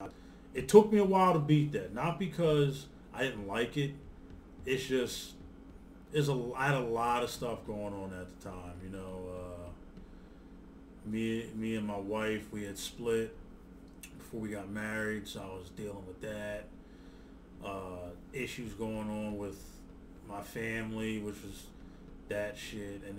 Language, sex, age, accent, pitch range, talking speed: English, male, 30-49, American, 100-120 Hz, 155 wpm